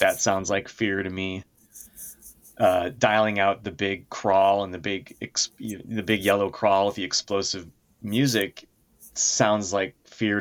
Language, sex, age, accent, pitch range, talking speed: English, male, 30-49, American, 100-120 Hz, 150 wpm